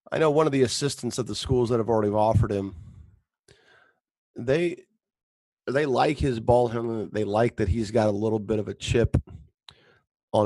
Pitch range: 105-125 Hz